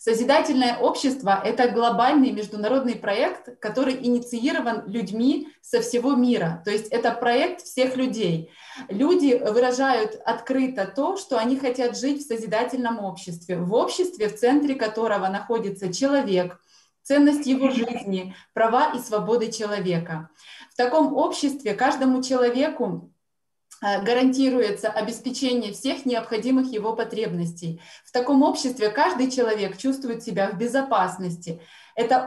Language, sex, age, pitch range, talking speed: Russian, female, 20-39, 210-265 Hz, 120 wpm